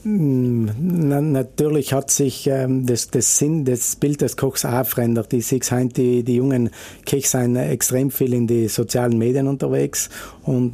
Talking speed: 145 wpm